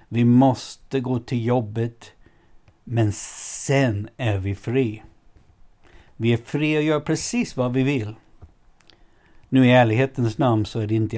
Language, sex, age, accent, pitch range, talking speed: Swedish, male, 60-79, native, 110-130 Hz, 145 wpm